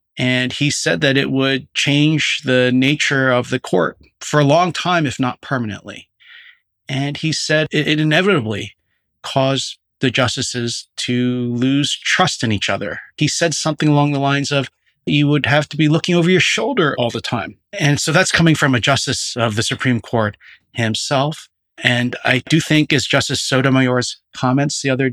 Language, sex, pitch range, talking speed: English, male, 130-165 Hz, 175 wpm